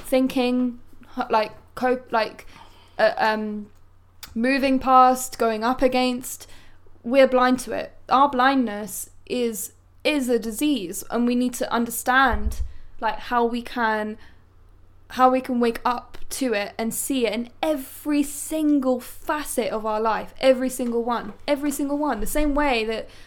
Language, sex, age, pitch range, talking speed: English, female, 10-29, 225-270 Hz, 145 wpm